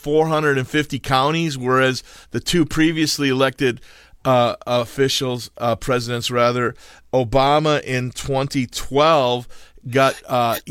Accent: American